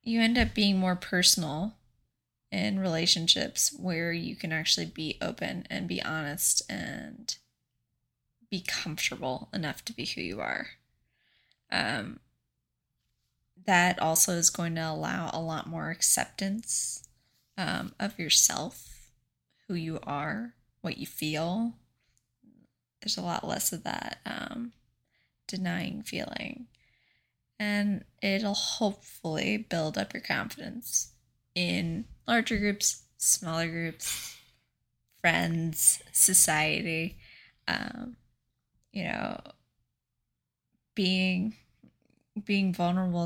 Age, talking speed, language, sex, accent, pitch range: 10-29, 105 wpm, English, female, American, 160-215 Hz